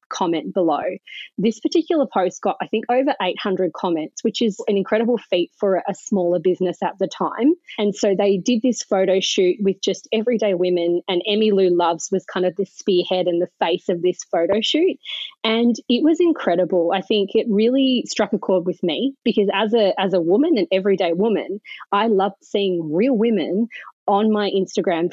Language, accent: English, Australian